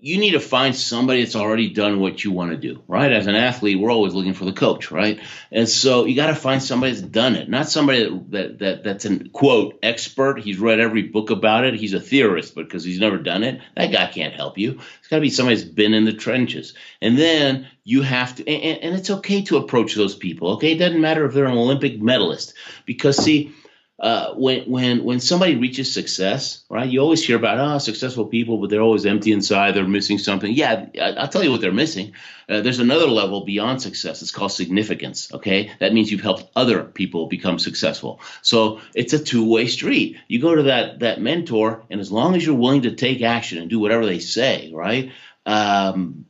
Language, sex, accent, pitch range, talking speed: English, male, American, 100-130 Hz, 230 wpm